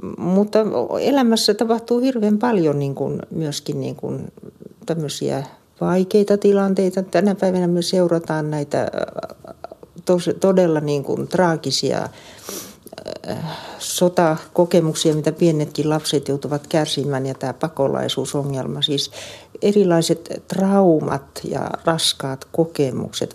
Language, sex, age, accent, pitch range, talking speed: Finnish, female, 60-79, native, 150-205 Hz, 95 wpm